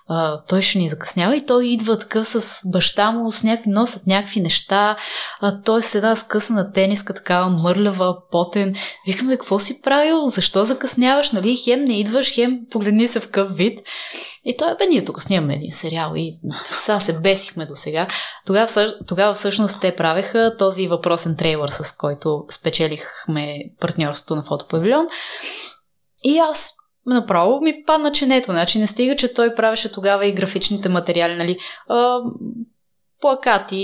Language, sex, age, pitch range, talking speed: Bulgarian, female, 20-39, 175-240 Hz, 170 wpm